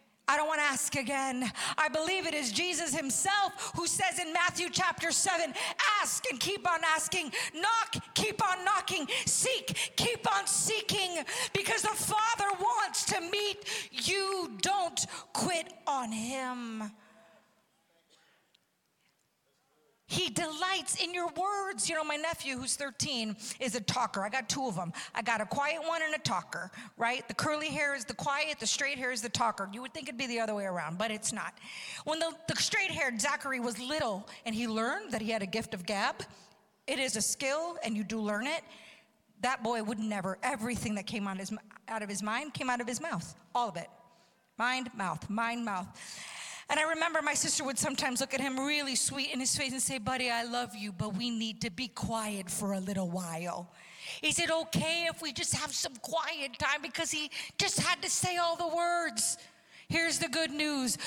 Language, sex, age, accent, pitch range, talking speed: English, female, 40-59, American, 225-335 Hz, 195 wpm